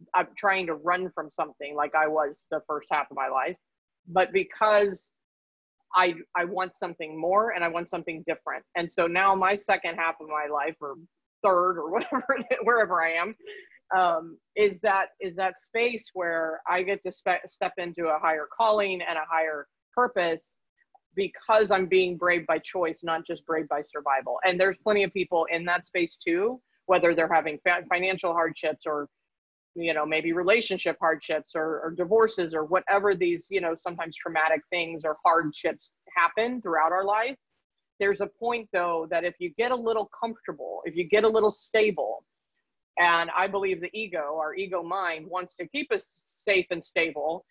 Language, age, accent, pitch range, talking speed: English, 30-49, American, 160-200 Hz, 180 wpm